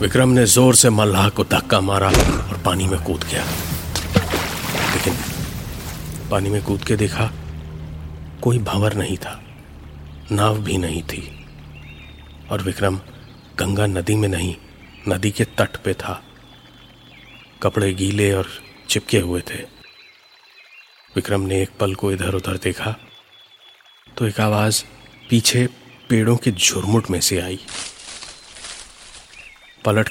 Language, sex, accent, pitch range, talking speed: Hindi, male, native, 95-120 Hz, 125 wpm